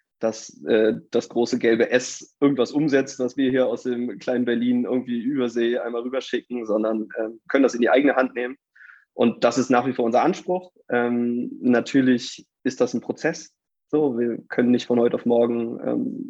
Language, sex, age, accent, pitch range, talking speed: German, male, 20-39, German, 115-130 Hz, 190 wpm